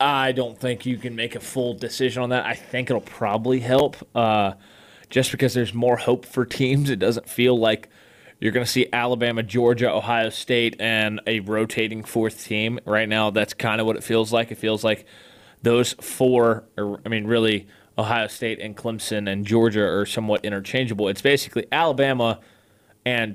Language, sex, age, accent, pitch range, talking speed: English, male, 20-39, American, 105-125 Hz, 180 wpm